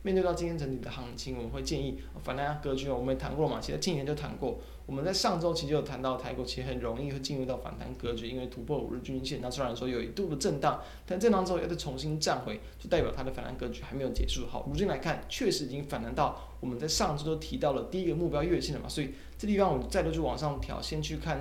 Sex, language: male, Chinese